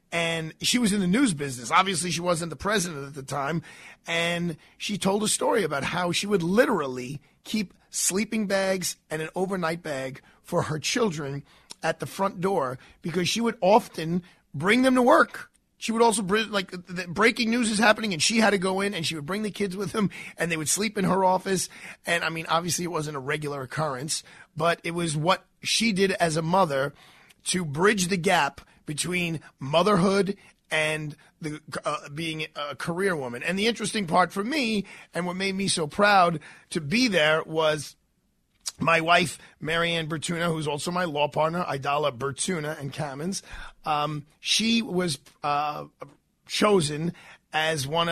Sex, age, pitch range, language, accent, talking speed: male, 30-49, 155-195 Hz, English, American, 180 wpm